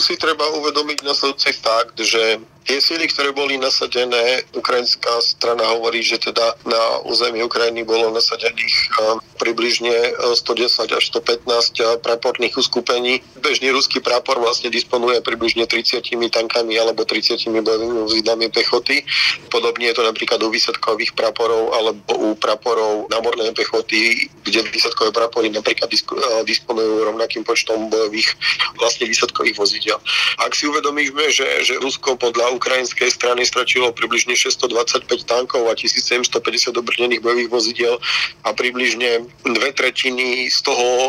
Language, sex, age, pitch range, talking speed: Slovak, male, 40-59, 115-150 Hz, 125 wpm